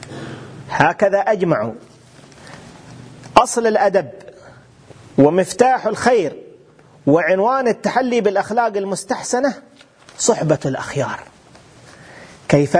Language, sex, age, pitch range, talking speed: Arabic, male, 40-59, 150-195 Hz, 60 wpm